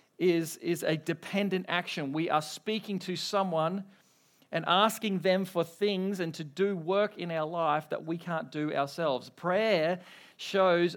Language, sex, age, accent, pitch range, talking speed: English, male, 40-59, Australian, 165-195 Hz, 160 wpm